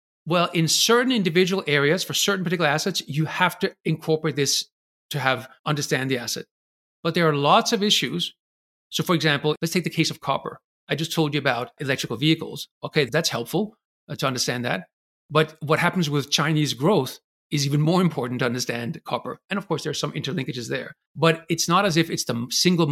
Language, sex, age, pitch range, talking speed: English, male, 40-59, 140-170 Hz, 200 wpm